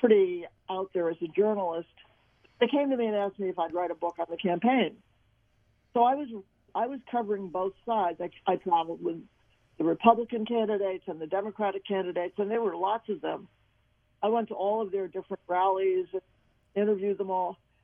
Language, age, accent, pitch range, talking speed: English, 50-69, American, 170-215 Hz, 190 wpm